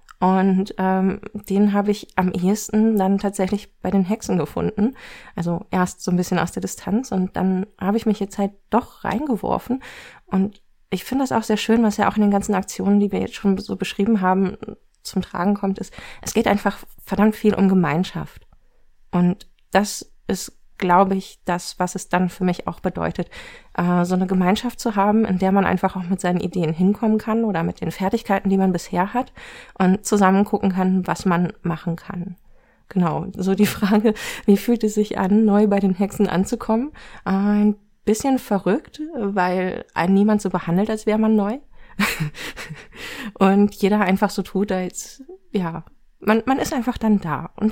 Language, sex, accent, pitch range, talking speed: German, female, German, 185-215 Hz, 185 wpm